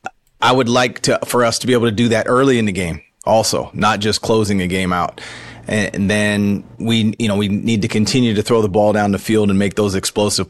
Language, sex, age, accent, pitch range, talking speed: English, male, 30-49, American, 100-110 Hz, 245 wpm